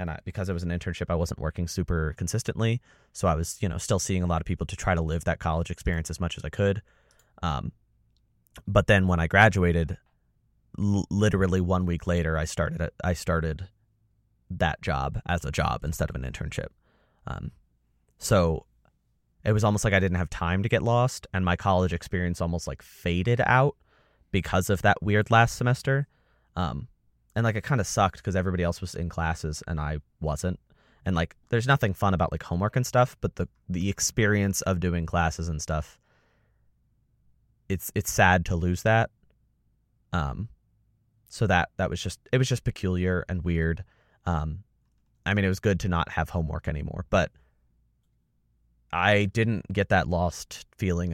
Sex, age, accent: male, 20-39, American